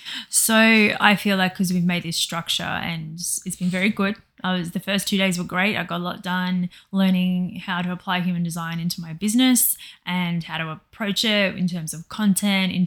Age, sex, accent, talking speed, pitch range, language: 20-39, female, Australian, 215 wpm, 180-200 Hz, English